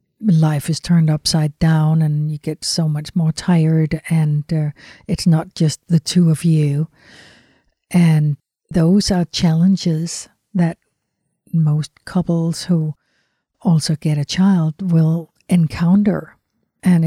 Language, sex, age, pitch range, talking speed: English, female, 60-79, 155-175 Hz, 125 wpm